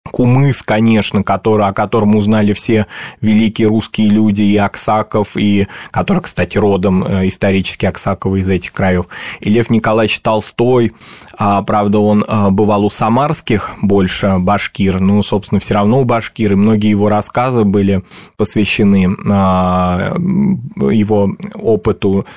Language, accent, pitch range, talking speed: Russian, native, 100-125 Hz, 120 wpm